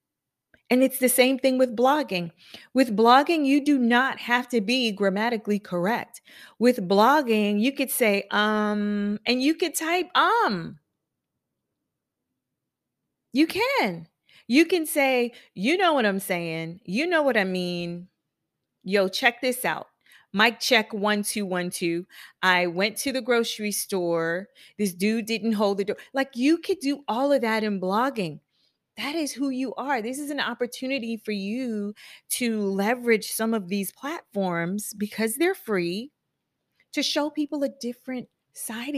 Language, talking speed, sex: English, 155 wpm, female